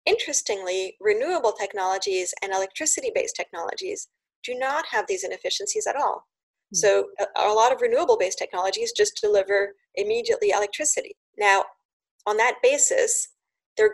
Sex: female